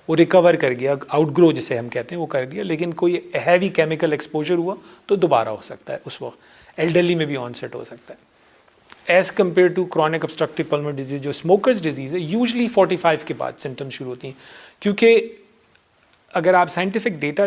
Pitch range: 140-185 Hz